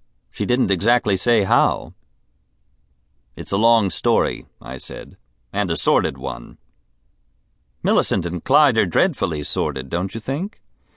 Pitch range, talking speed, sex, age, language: 65-100 Hz, 130 wpm, male, 50-69, English